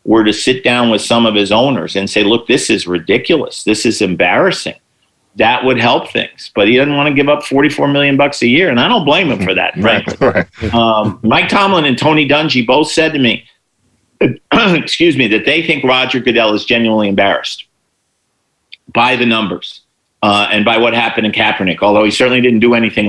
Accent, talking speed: American, 205 wpm